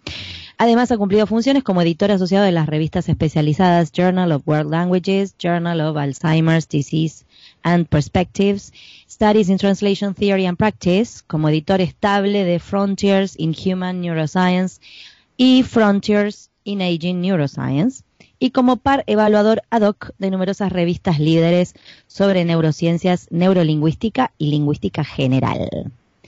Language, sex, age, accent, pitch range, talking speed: Spanish, female, 20-39, Argentinian, 160-215 Hz, 130 wpm